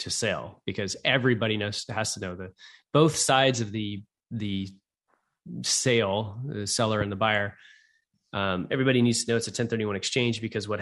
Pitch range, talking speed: 95-120 Hz, 185 wpm